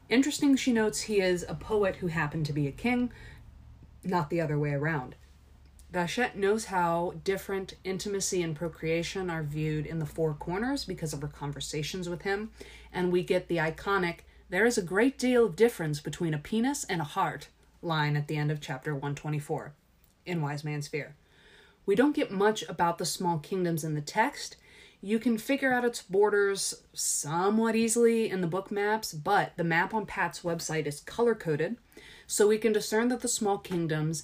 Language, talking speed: English, 185 wpm